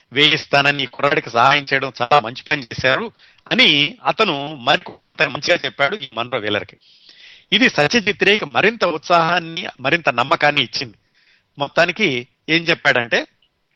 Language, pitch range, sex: Telugu, 130-170 Hz, male